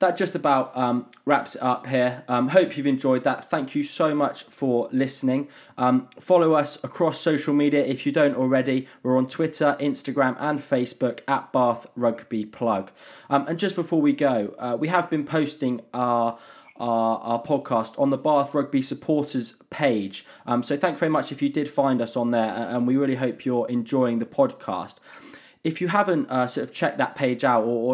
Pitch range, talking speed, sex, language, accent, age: 120-150 Hz, 200 wpm, male, English, British, 20-39